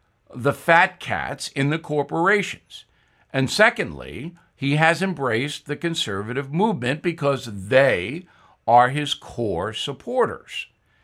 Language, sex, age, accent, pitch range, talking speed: English, male, 60-79, American, 130-185 Hz, 110 wpm